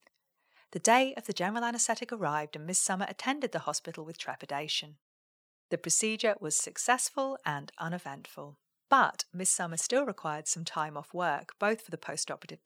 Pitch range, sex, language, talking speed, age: 150-195 Hz, female, English, 160 wpm, 40-59